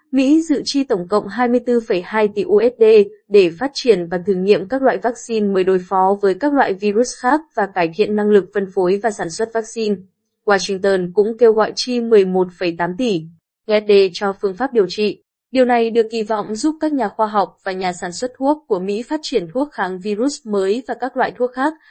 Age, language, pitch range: 20-39, Vietnamese, 195-240 Hz